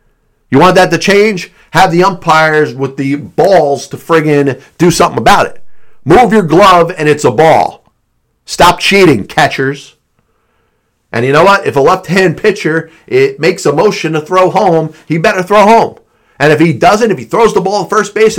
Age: 40-59